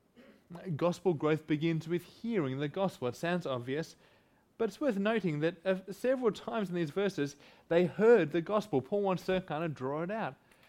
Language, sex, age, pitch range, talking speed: English, male, 20-39, 140-185 Hz, 185 wpm